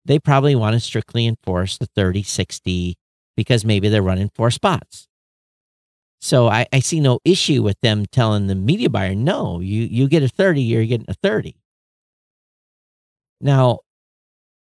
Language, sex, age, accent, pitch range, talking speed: English, male, 50-69, American, 95-135 Hz, 155 wpm